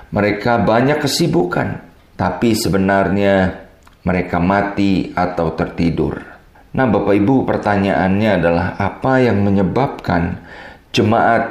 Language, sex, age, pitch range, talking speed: Indonesian, male, 40-59, 100-120 Hz, 95 wpm